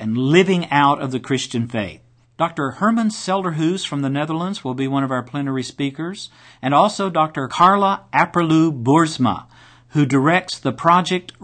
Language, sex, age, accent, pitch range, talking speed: English, male, 50-69, American, 130-170 Hz, 150 wpm